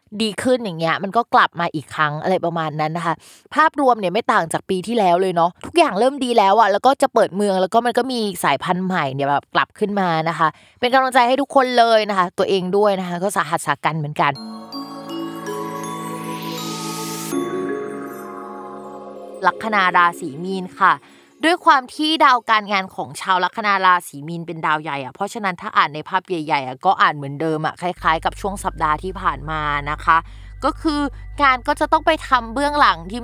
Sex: female